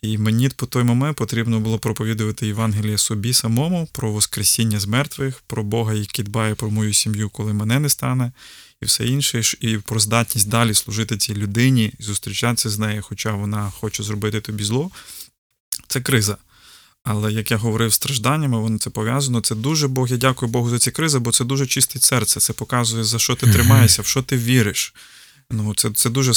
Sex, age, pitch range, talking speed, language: male, 20-39, 110-120 Hz, 190 wpm, Ukrainian